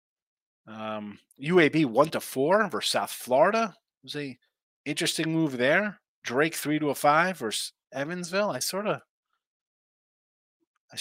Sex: male